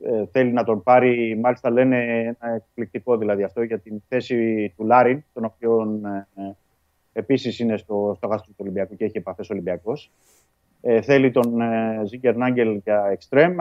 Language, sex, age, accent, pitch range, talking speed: Greek, male, 30-49, native, 110-140 Hz, 165 wpm